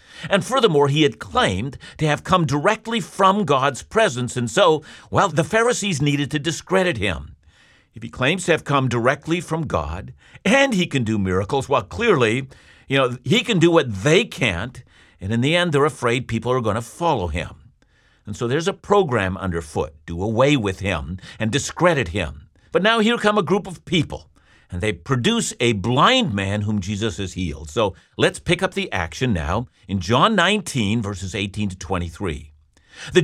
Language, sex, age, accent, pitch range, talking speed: English, male, 50-69, American, 100-165 Hz, 185 wpm